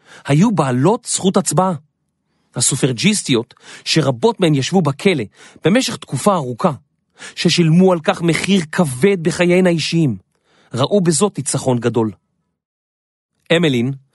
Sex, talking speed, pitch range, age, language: male, 100 wpm, 130-180 Hz, 40-59, Hebrew